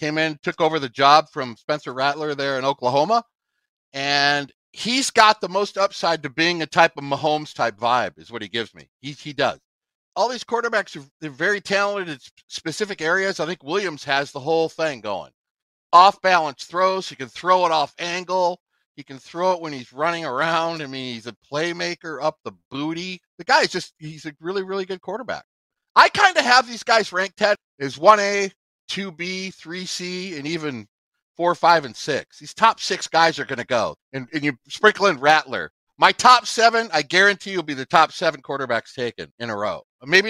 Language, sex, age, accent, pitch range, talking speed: English, male, 50-69, American, 140-190 Hz, 195 wpm